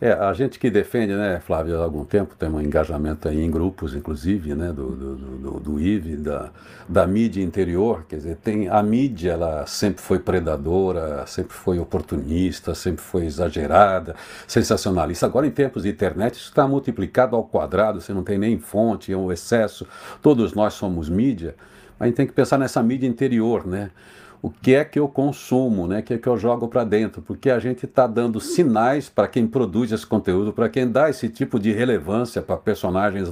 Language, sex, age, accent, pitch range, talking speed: Portuguese, male, 60-79, Brazilian, 90-125 Hz, 200 wpm